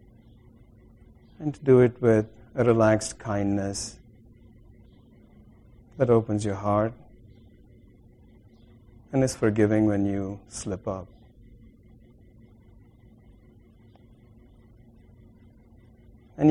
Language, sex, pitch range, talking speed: English, male, 110-115 Hz, 75 wpm